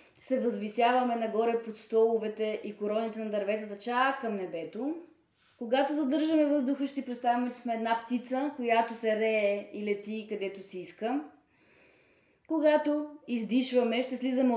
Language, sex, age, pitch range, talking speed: Bulgarian, female, 20-39, 205-255 Hz, 140 wpm